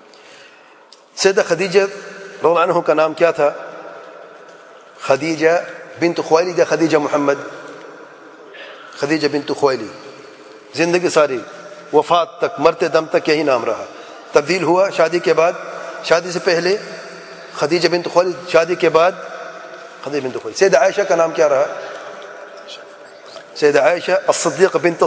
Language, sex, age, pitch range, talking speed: English, male, 40-59, 165-195 Hz, 125 wpm